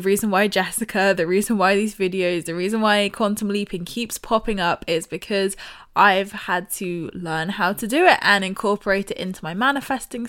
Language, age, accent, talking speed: English, 20-39, British, 185 wpm